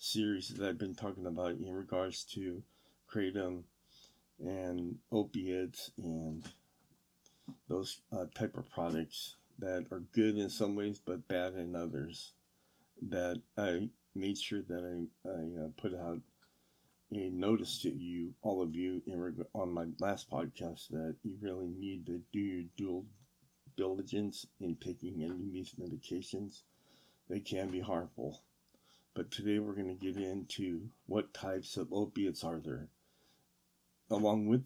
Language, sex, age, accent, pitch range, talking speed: English, male, 50-69, American, 85-105 Hz, 140 wpm